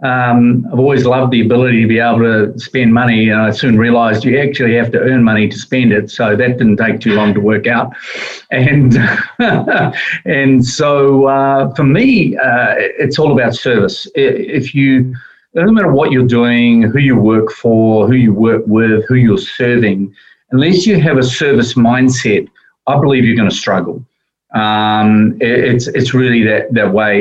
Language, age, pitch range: English, 40-59, 110-130 Hz